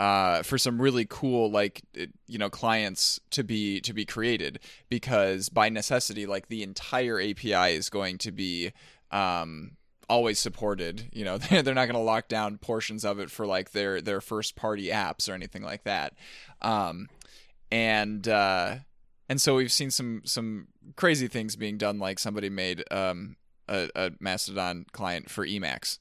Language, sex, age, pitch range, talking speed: English, male, 20-39, 100-130 Hz, 170 wpm